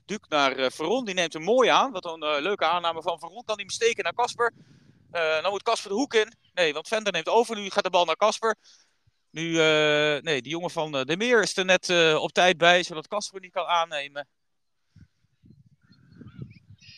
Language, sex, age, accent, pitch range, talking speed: Dutch, male, 40-59, Dutch, 155-210 Hz, 205 wpm